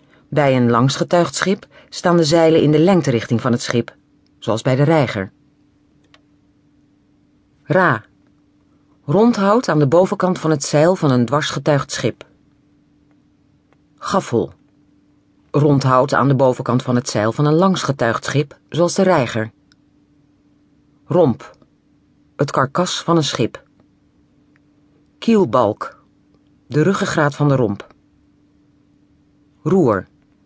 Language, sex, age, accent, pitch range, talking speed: Dutch, female, 40-59, Dutch, 130-170 Hz, 110 wpm